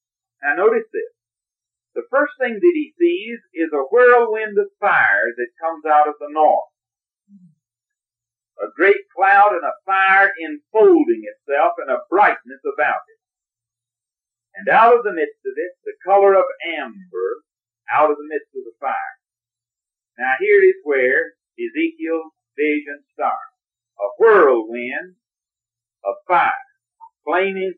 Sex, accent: male, American